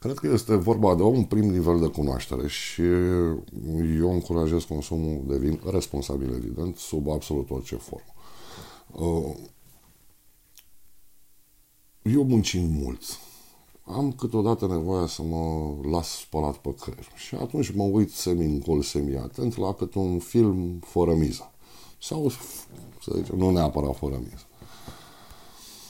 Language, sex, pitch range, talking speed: Romanian, male, 80-105 Hz, 120 wpm